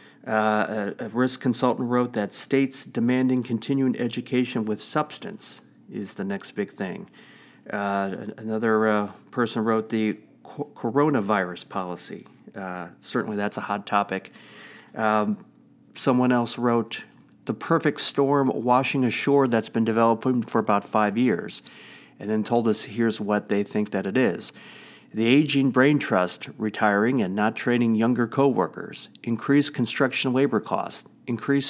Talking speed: 140 wpm